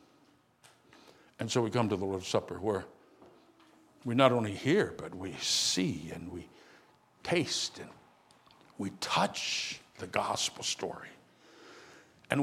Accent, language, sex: American, English, male